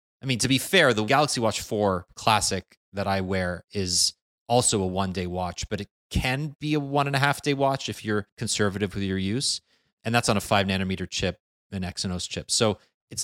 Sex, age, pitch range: male, 30-49, 95-125 Hz